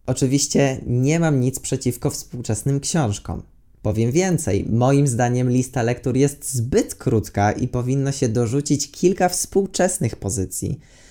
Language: Polish